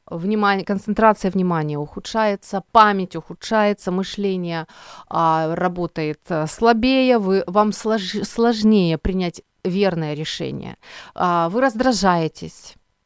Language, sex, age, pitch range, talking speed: Ukrainian, female, 30-49, 165-215 Hz, 95 wpm